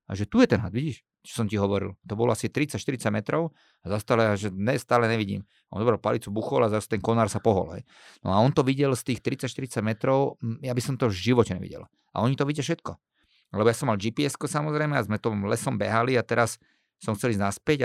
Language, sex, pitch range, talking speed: Slovak, male, 105-130 Hz, 240 wpm